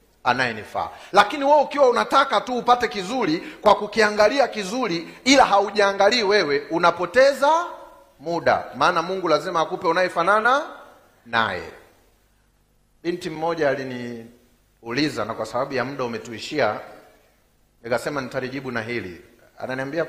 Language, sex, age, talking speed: Swahili, male, 40-59, 110 wpm